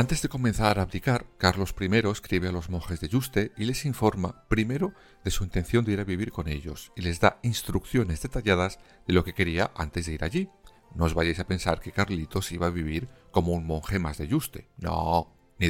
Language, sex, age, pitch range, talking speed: Spanish, male, 40-59, 85-115 Hz, 220 wpm